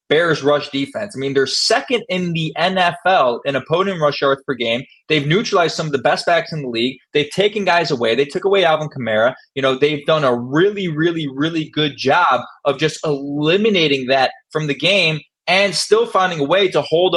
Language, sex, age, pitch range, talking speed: English, male, 20-39, 135-170 Hz, 205 wpm